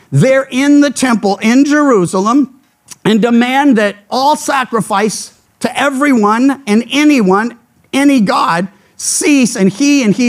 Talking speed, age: 130 wpm, 50-69